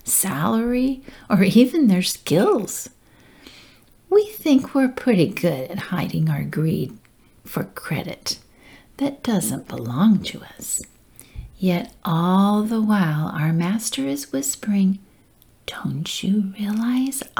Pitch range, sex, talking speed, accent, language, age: 175-255 Hz, female, 110 wpm, American, English, 50-69